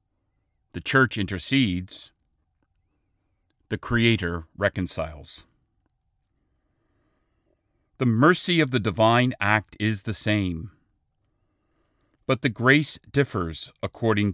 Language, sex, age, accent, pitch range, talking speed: English, male, 50-69, American, 90-115 Hz, 85 wpm